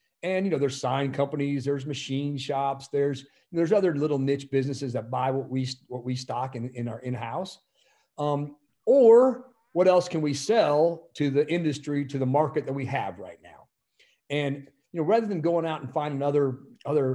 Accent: American